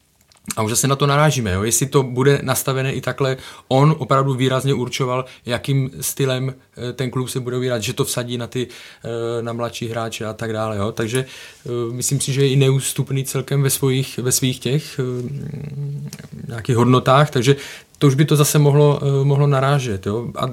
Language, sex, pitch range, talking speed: Czech, male, 110-135 Hz, 180 wpm